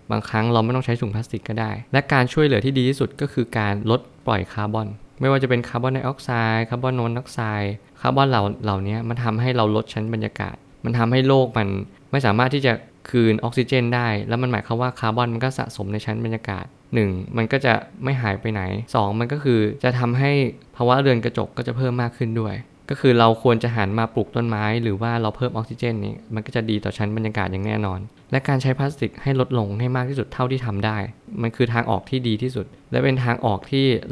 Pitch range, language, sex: 110-125 Hz, Thai, male